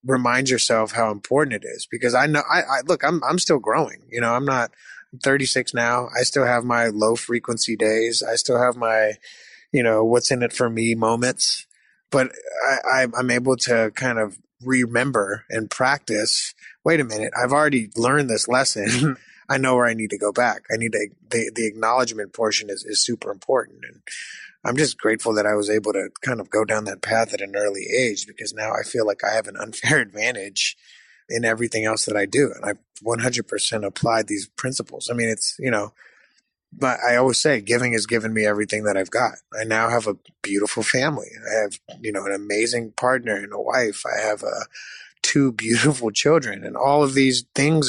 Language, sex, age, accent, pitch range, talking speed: English, male, 20-39, American, 110-130 Hz, 205 wpm